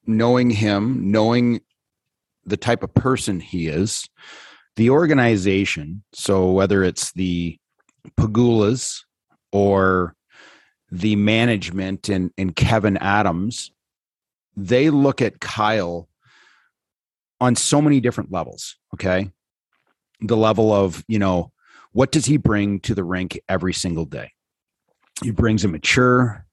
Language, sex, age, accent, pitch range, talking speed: English, male, 40-59, American, 95-115 Hz, 120 wpm